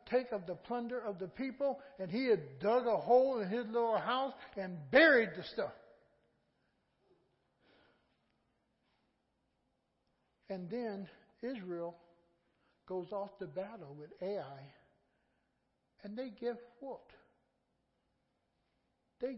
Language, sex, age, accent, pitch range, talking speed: English, male, 60-79, American, 180-235 Hz, 110 wpm